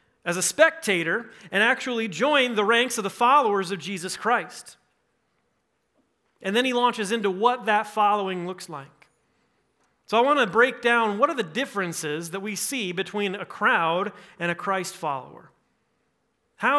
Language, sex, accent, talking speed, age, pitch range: English, male, American, 160 wpm, 30-49, 190-245 Hz